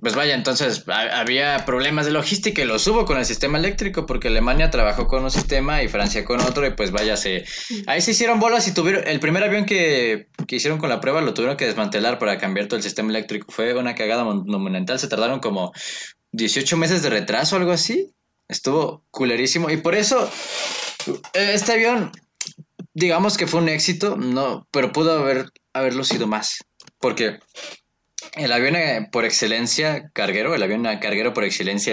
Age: 20-39